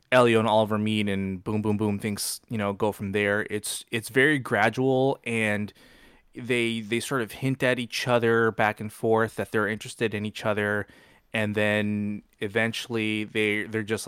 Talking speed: 180 wpm